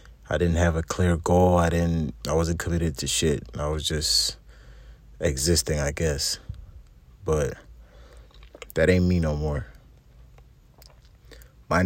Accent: American